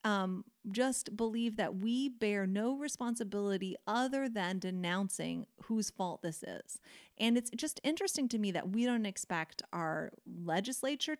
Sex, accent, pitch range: female, American, 195-270 Hz